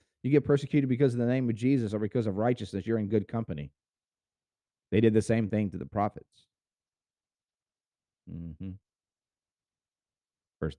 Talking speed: 155 wpm